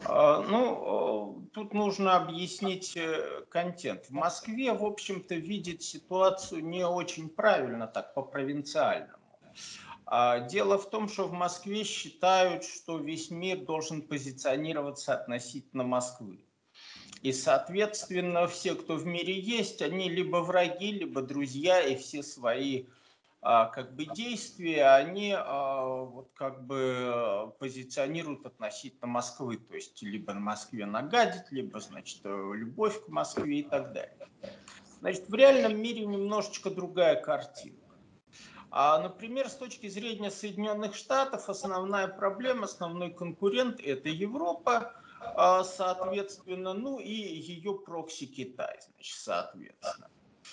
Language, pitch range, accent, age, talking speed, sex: Russian, 140-210 Hz, native, 50-69, 115 wpm, male